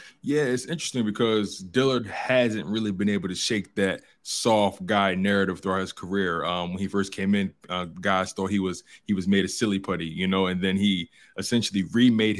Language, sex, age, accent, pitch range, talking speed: English, male, 20-39, American, 95-110 Hz, 205 wpm